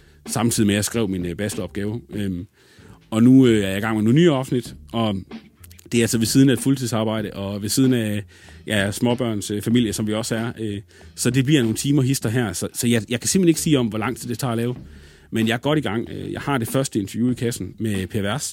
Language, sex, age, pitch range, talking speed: Danish, male, 30-49, 105-125 Hz, 255 wpm